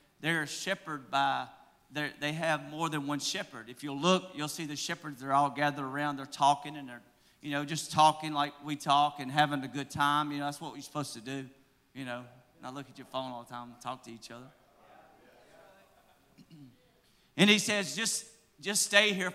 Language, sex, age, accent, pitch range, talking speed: English, male, 40-59, American, 145-195 Hz, 210 wpm